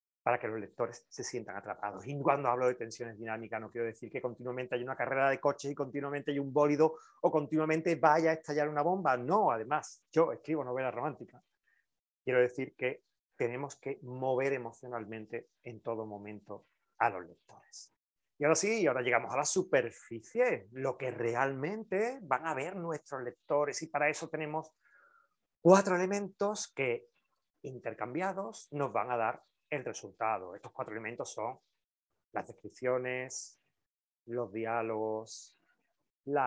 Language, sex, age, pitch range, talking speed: Spanish, male, 30-49, 120-160 Hz, 155 wpm